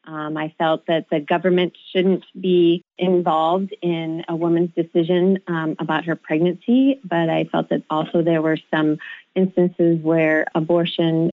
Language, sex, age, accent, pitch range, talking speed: English, female, 30-49, American, 160-185 Hz, 150 wpm